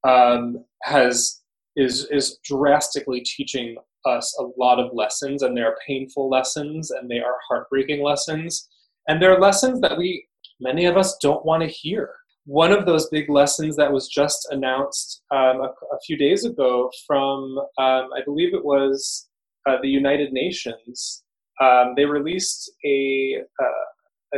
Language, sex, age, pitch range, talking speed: English, male, 20-39, 135-160 Hz, 160 wpm